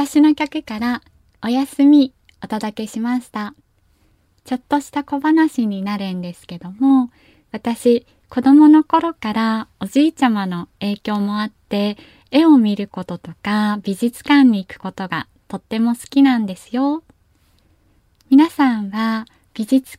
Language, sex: Japanese, female